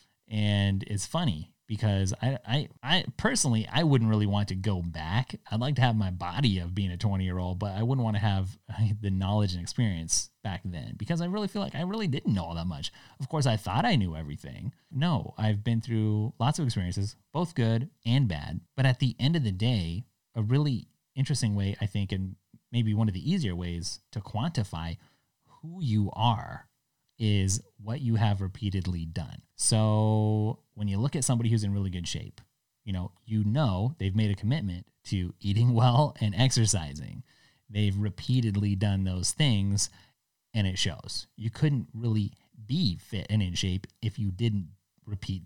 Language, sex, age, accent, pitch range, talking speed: English, male, 30-49, American, 100-130 Hz, 190 wpm